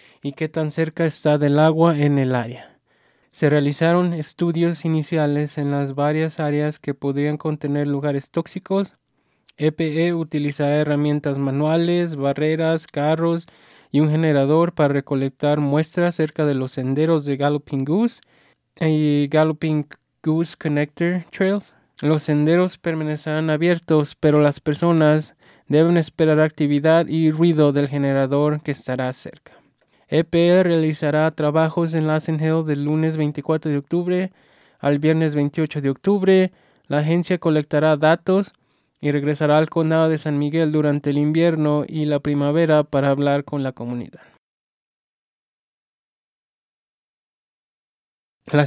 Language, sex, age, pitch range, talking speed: English, male, 20-39, 145-160 Hz, 125 wpm